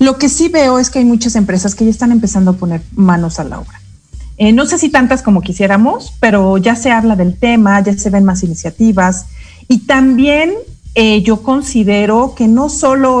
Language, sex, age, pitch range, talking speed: Spanish, female, 40-59, 180-240 Hz, 205 wpm